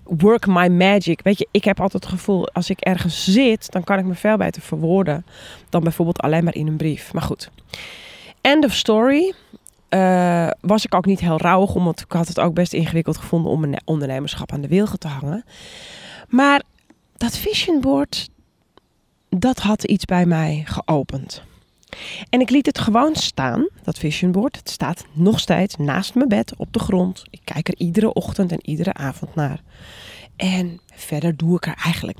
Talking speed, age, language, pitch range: 185 wpm, 20-39, Dutch, 160-205 Hz